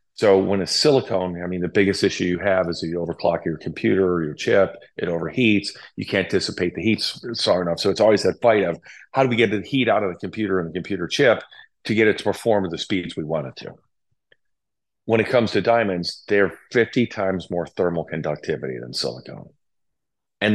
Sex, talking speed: male, 215 wpm